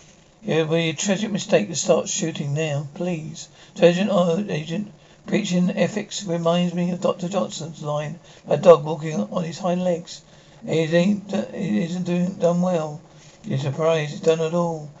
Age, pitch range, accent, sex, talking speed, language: 60-79, 160-180 Hz, British, male, 165 wpm, English